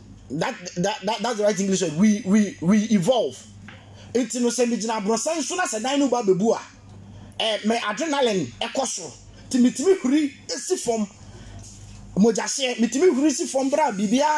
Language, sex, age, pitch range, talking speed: English, male, 30-49, 185-260 Hz, 155 wpm